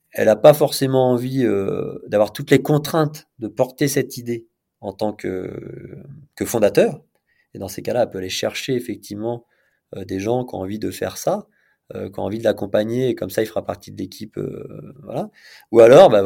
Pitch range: 110-145 Hz